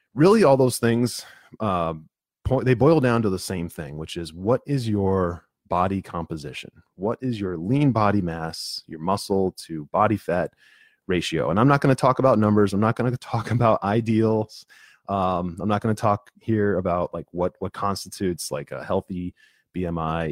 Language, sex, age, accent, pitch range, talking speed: English, male, 30-49, American, 90-120 Hz, 175 wpm